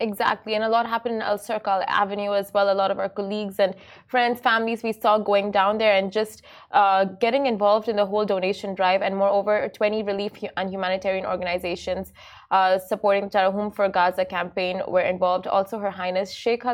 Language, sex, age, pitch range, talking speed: Arabic, female, 20-39, 185-215 Hz, 195 wpm